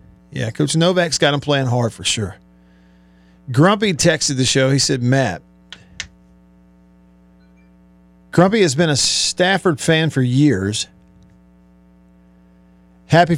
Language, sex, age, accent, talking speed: English, male, 50-69, American, 110 wpm